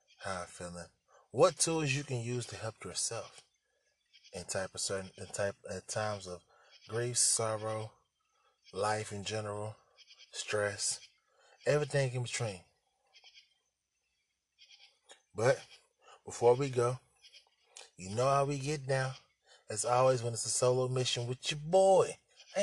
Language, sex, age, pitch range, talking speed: English, male, 20-39, 105-140 Hz, 135 wpm